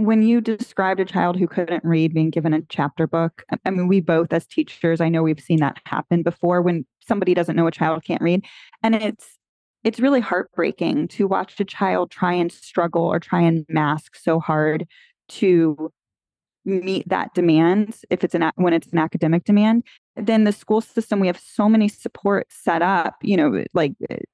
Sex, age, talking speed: female, 20-39, 190 wpm